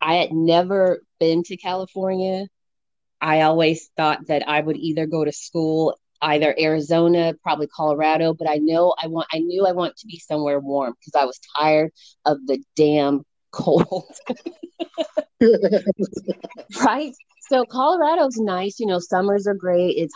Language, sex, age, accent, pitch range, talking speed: English, female, 30-49, American, 155-190 Hz, 150 wpm